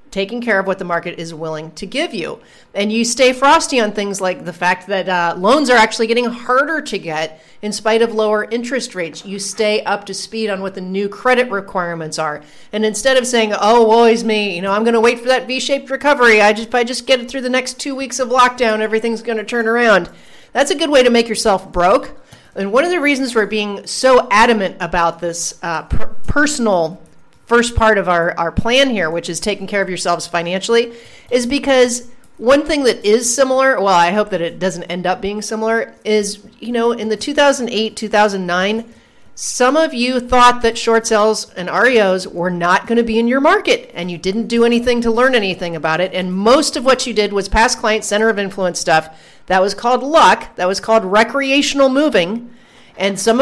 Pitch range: 190-245 Hz